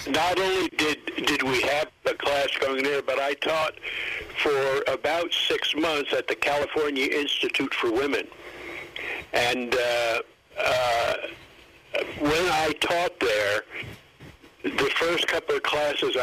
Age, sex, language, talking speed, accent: 60-79, male, English, 130 wpm, American